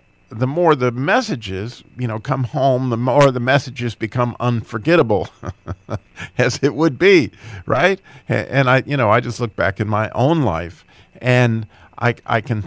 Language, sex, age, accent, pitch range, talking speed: English, male, 50-69, American, 100-130 Hz, 165 wpm